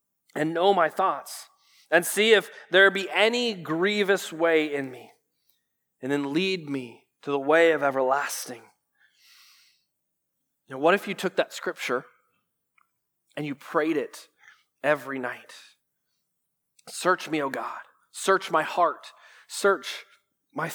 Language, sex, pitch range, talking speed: English, male, 160-205 Hz, 130 wpm